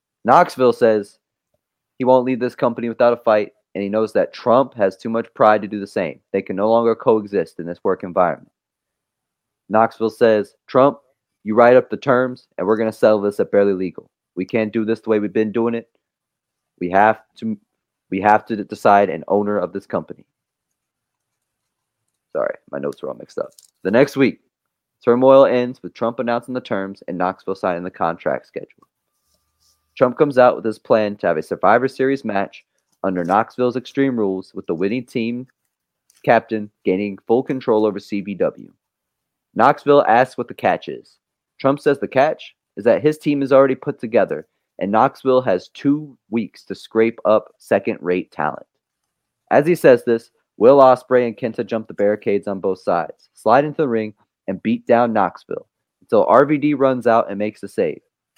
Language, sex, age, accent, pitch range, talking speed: English, male, 30-49, American, 105-125 Hz, 180 wpm